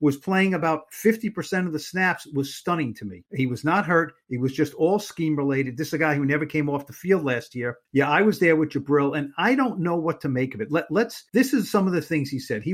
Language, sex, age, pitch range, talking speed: English, male, 50-69, 140-180 Hz, 285 wpm